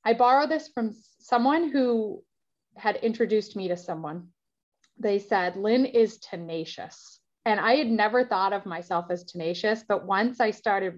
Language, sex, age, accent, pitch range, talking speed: English, female, 30-49, American, 185-240 Hz, 160 wpm